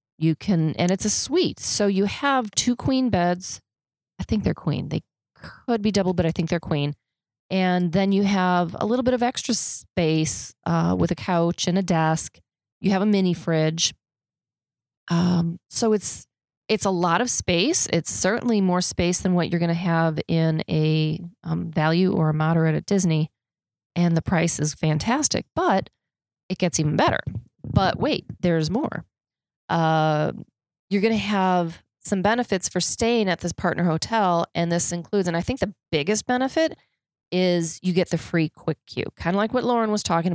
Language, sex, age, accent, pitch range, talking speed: English, female, 30-49, American, 160-200 Hz, 185 wpm